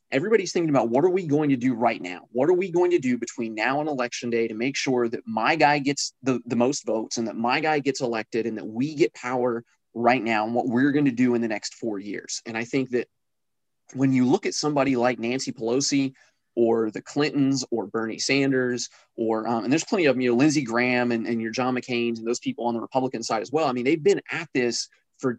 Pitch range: 120-140 Hz